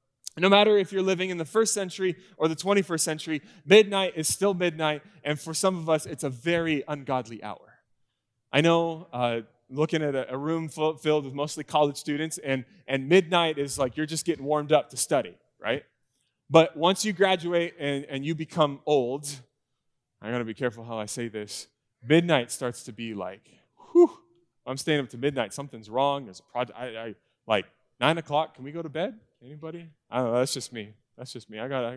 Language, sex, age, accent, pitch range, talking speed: English, male, 20-39, American, 135-190 Hz, 205 wpm